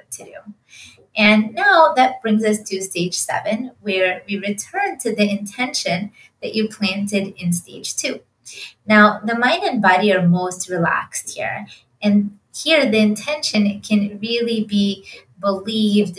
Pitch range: 185-225 Hz